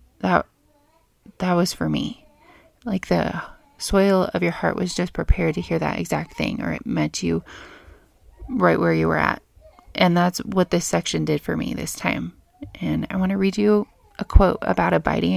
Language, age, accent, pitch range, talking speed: English, 30-49, American, 120-195 Hz, 185 wpm